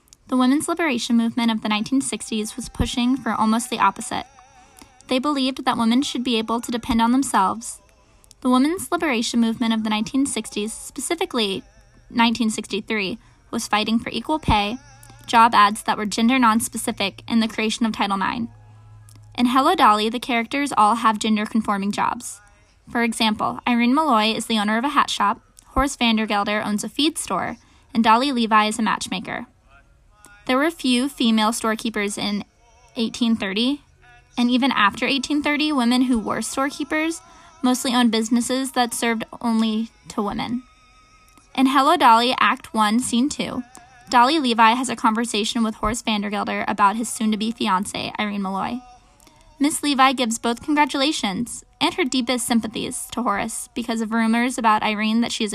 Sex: female